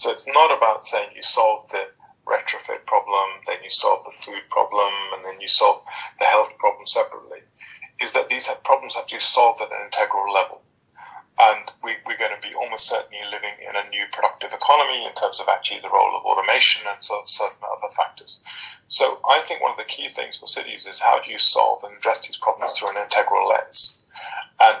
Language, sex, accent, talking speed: German, male, British, 215 wpm